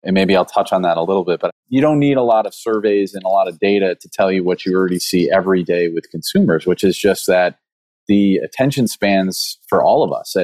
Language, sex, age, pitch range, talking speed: English, male, 30-49, 90-95 Hz, 255 wpm